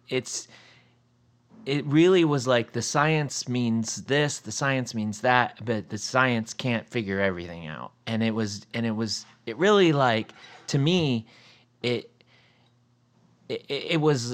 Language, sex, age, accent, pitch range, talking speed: English, male, 30-49, American, 105-125 Hz, 145 wpm